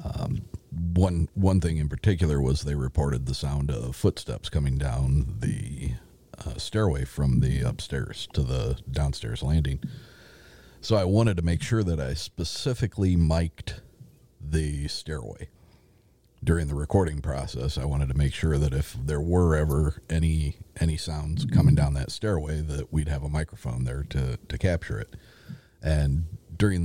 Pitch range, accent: 75-95 Hz, American